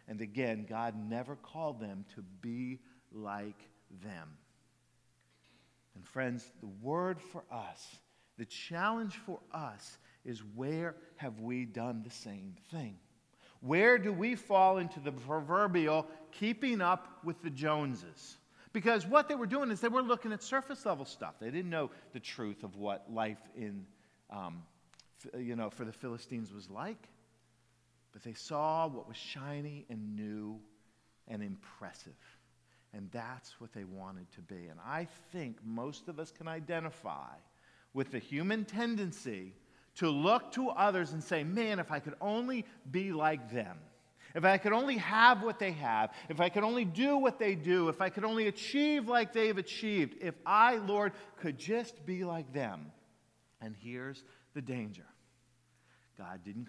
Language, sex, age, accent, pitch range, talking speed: English, male, 50-69, American, 115-190 Hz, 160 wpm